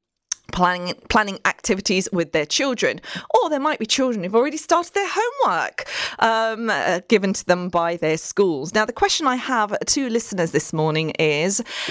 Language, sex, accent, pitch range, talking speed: English, female, British, 160-230 Hz, 170 wpm